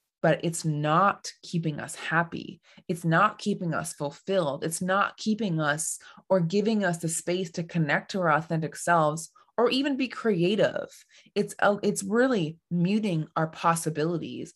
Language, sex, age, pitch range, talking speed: English, female, 20-39, 155-195 Hz, 150 wpm